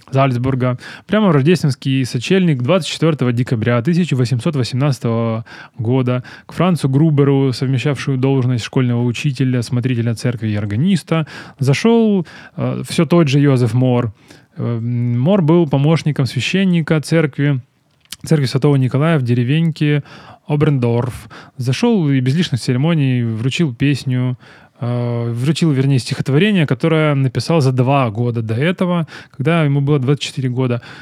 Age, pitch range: 20-39, 125-155 Hz